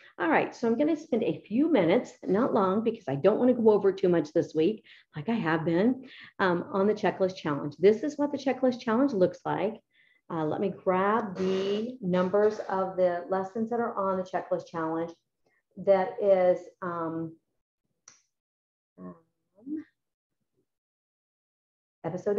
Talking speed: 160 wpm